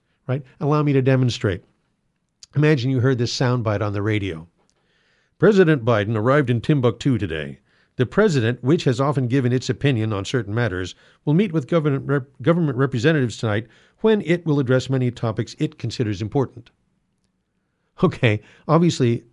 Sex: male